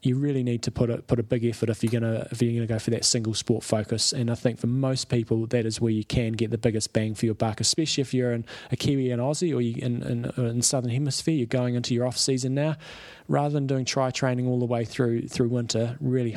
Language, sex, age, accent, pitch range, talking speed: English, male, 20-39, Australian, 115-130 Hz, 270 wpm